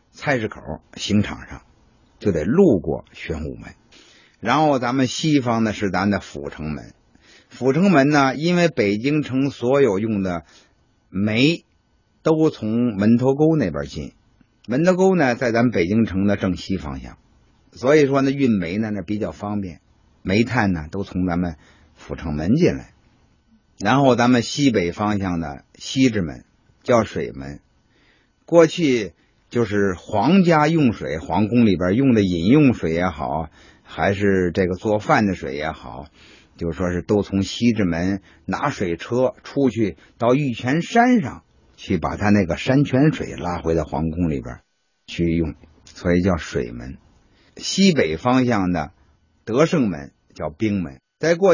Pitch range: 85-125 Hz